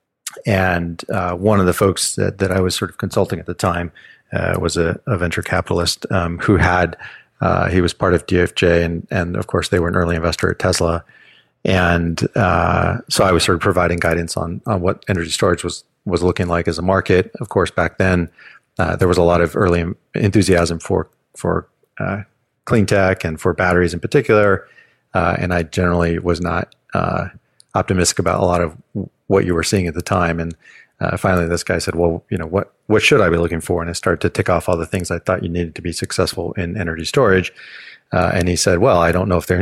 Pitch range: 85-95 Hz